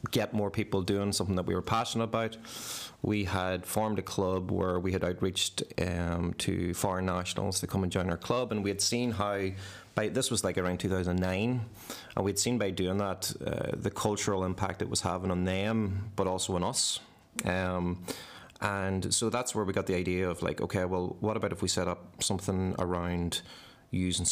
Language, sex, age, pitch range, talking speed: English, male, 30-49, 90-105 Hz, 200 wpm